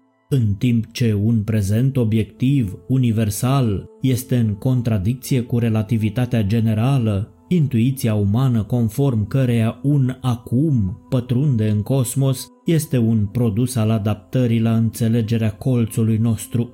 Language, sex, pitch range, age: Romanian, male, 115-130 Hz, 20-39